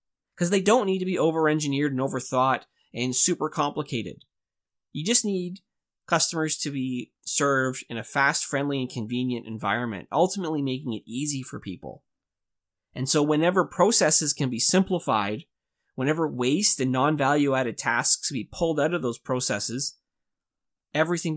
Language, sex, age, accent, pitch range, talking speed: English, male, 20-39, American, 115-150 Hz, 140 wpm